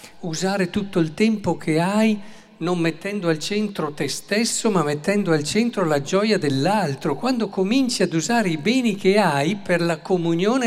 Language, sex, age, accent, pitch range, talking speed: Italian, male, 50-69, native, 160-215 Hz, 170 wpm